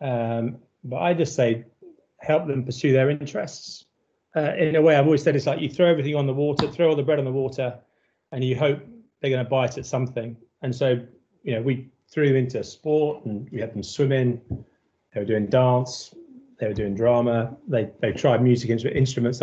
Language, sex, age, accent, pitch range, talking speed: English, male, 30-49, British, 120-145 Hz, 215 wpm